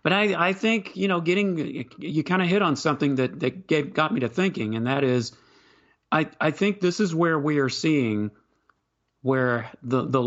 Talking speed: 210 wpm